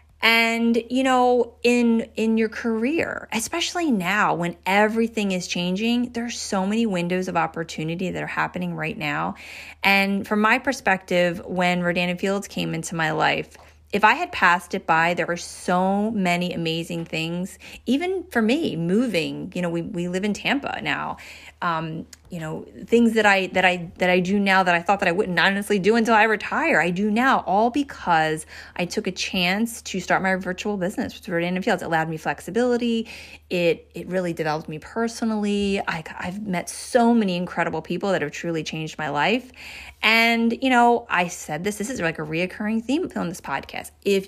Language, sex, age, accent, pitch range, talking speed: English, female, 30-49, American, 175-230 Hz, 185 wpm